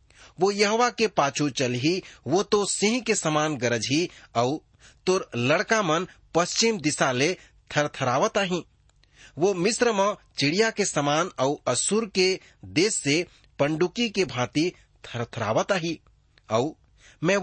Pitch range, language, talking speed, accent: 125-195 Hz, English, 135 wpm, Indian